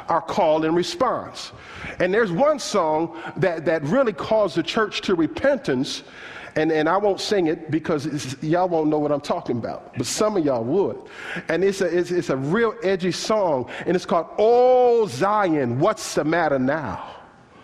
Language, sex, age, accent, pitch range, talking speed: English, male, 50-69, American, 160-235 Hz, 185 wpm